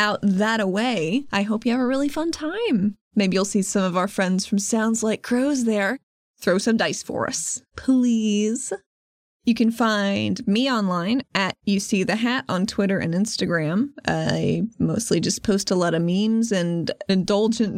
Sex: female